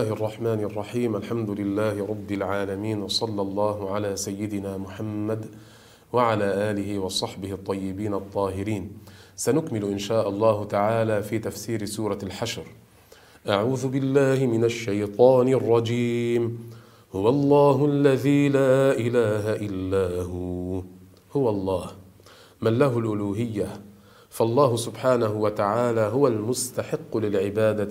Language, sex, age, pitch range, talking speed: Arabic, male, 40-59, 100-125 Hz, 105 wpm